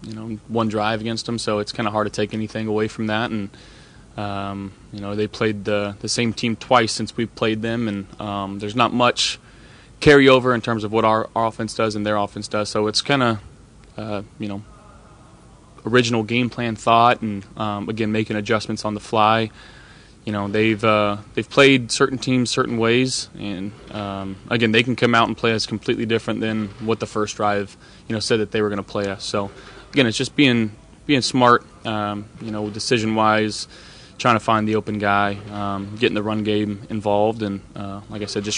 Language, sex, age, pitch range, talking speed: English, male, 20-39, 105-115 Hz, 205 wpm